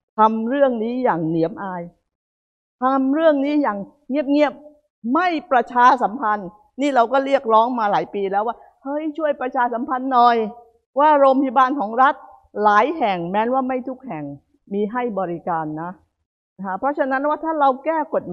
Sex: female